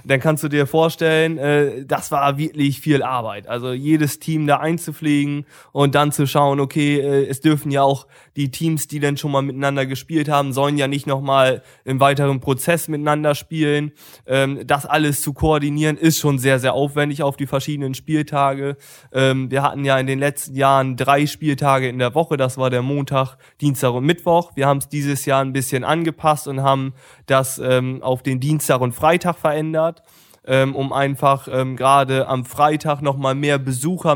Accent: German